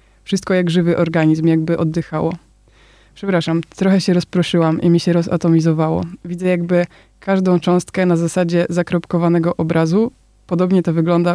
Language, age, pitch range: Polish, 20-39, 165-180 Hz